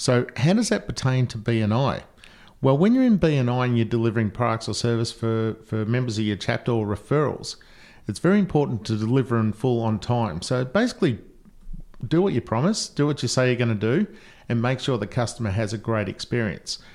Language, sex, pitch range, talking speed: English, male, 110-130 Hz, 200 wpm